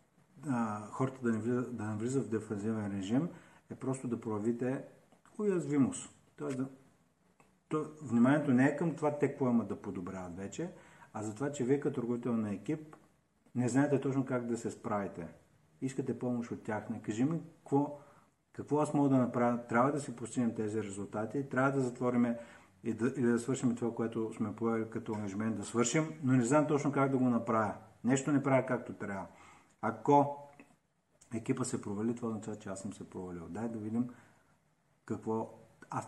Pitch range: 110-140 Hz